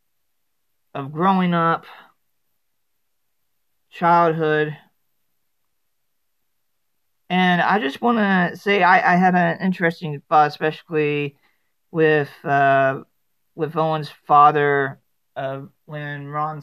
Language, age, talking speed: English, 40-59, 90 wpm